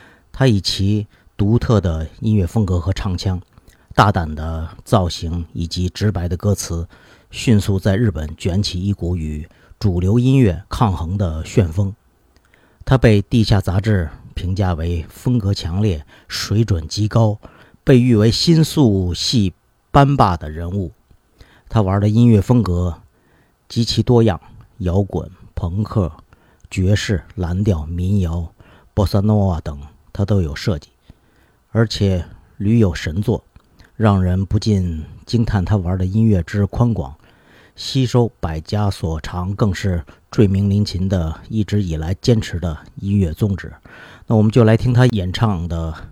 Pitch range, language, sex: 90-110 Hz, Chinese, male